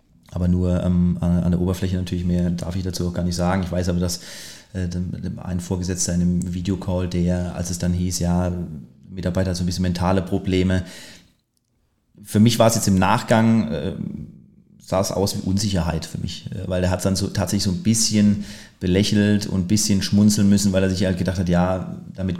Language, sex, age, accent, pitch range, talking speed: German, male, 30-49, German, 90-95 Hz, 205 wpm